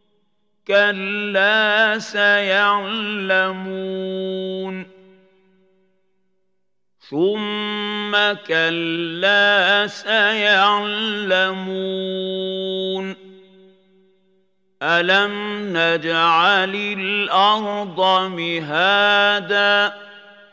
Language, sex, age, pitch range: Arabic, male, 50-69, 190-205 Hz